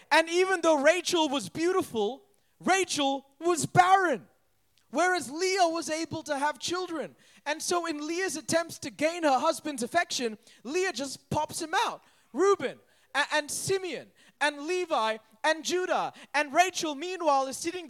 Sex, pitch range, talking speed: male, 240-310 Hz, 150 wpm